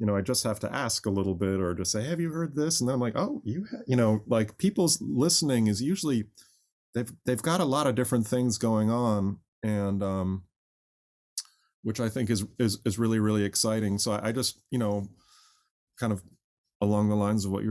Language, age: English, 30-49